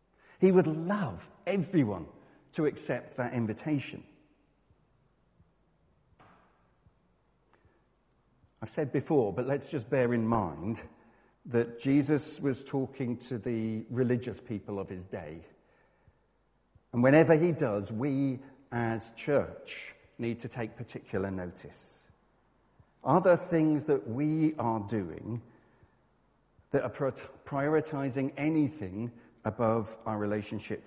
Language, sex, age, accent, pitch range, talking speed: English, male, 50-69, British, 115-150 Hz, 105 wpm